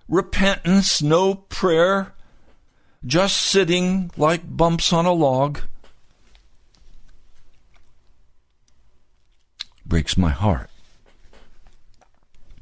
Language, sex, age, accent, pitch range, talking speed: English, male, 60-79, American, 75-95 Hz, 60 wpm